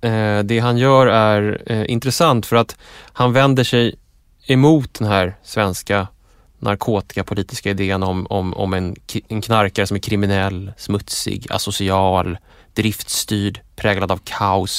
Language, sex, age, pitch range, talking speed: English, male, 20-39, 100-125 Hz, 135 wpm